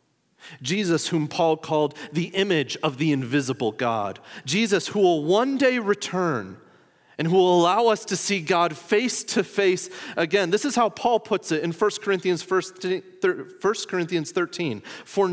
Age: 30-49